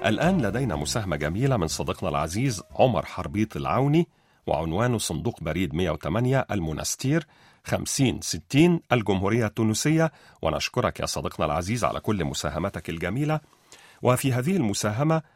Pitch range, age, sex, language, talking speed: 95-135 Hz, 40-59, male, Arabic, 115 wpm